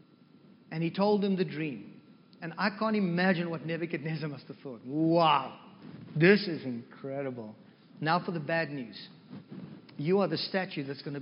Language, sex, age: English, male, 50-69